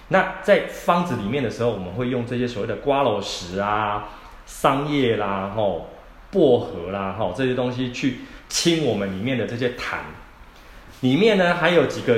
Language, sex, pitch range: Chinese, male, 105-140 Hz